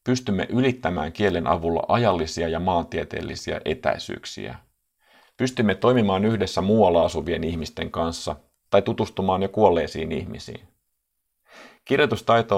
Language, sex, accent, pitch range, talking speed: Finnish, male, native, 85-105 Hz, 100 wpm